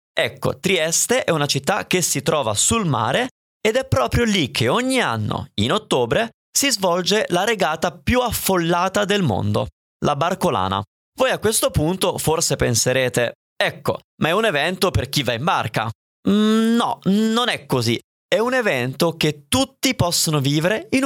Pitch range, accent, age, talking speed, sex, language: 125-205 Hz, native, 20-39, 160 wpm, male, Italian